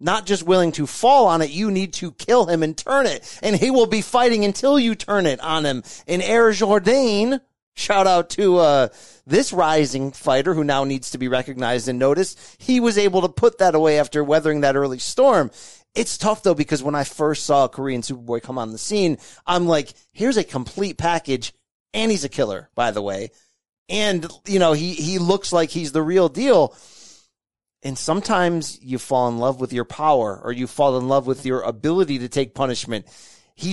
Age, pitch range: 30-49, 135-200 Hz